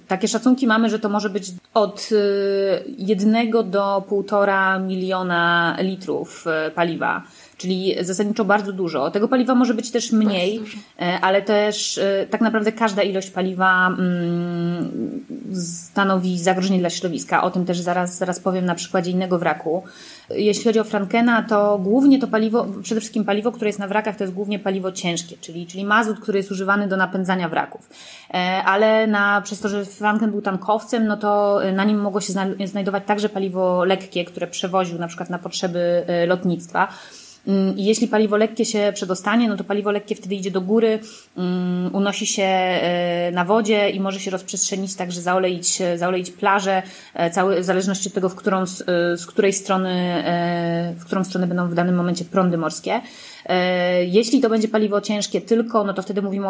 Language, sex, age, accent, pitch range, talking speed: Polish, female, 20-39, native, 180-210 Hz, 165 wpm